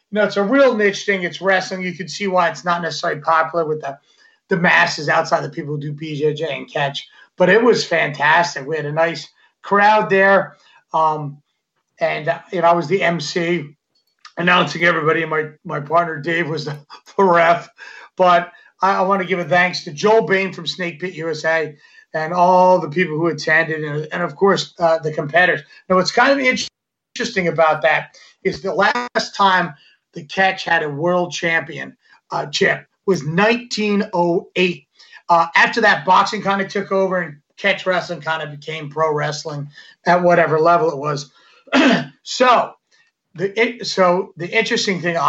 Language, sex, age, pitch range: English, male, 30-49, 160-195 Hz